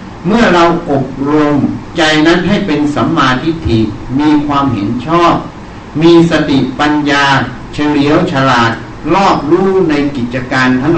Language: Thai